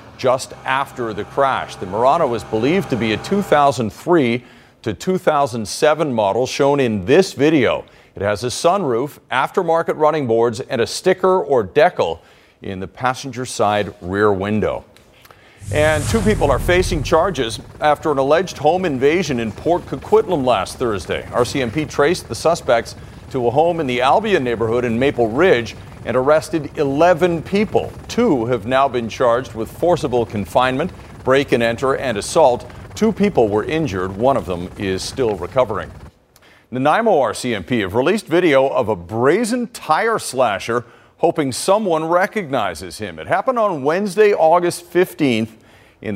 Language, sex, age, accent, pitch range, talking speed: English, male, 40-59, American, 110-160 Hz, 150 wpm